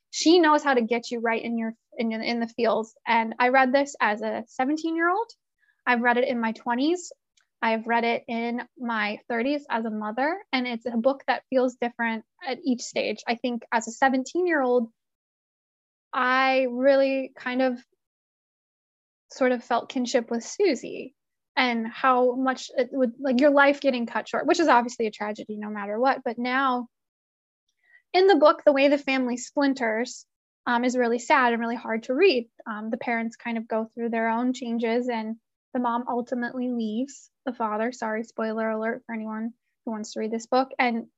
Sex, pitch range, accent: female, 230-270 Hz, American